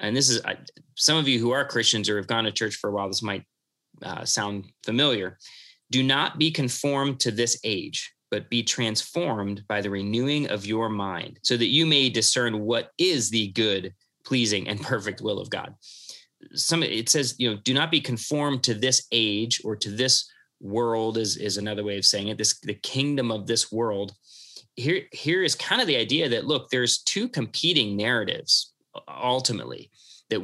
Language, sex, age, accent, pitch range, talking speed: English, male, 30-49, American, 105-130 Hz, 190 wpm